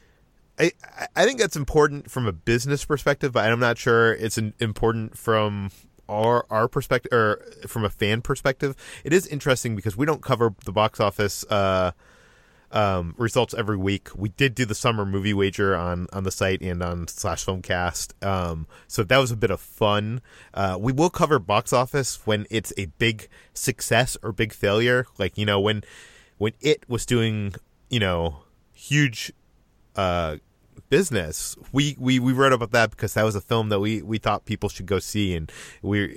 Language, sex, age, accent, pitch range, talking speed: English, male, 30-49, American, 95-120 Hz, 185 wpm